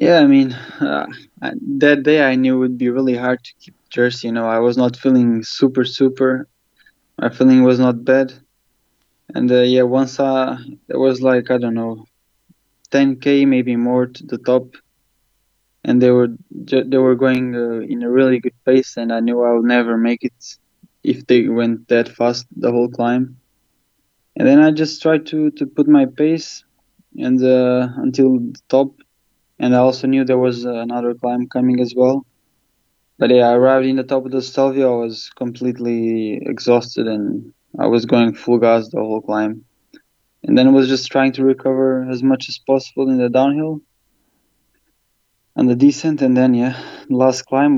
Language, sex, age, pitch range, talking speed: English, male, 20-39, 120-135 Hz, 185 wpm